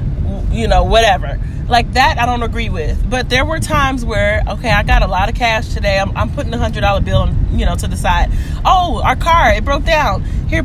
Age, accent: 30-49, American